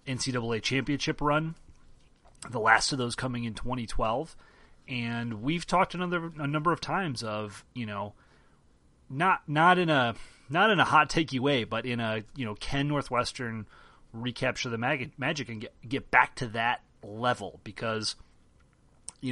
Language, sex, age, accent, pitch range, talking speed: English, male, 30-49, American, 110-135 Hz, 160 wpm